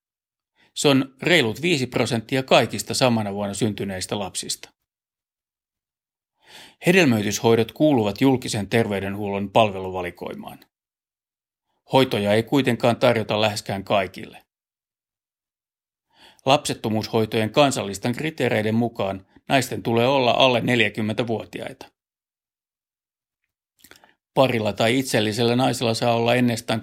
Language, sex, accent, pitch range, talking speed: Finnish, male, native, 110-130 Hz, 85 wpm